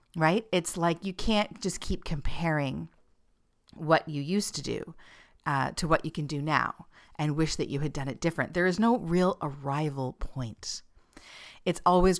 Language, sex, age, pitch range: English, female, 40-59, 145-180 Hz